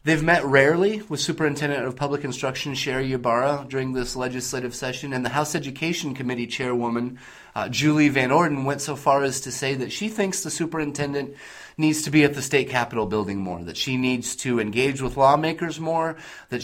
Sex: male